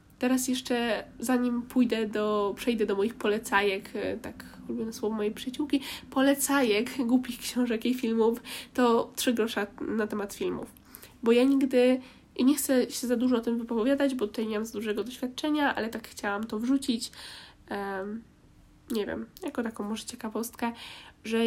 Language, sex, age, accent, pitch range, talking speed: Polish, female, 10-29, native, 210-260 Hz, 160 wpm